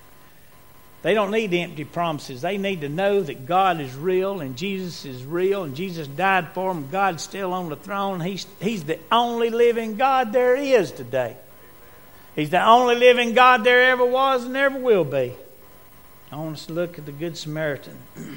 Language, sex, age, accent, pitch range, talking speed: English, male, 60-79, American, 140-195 Hz, 185 wpm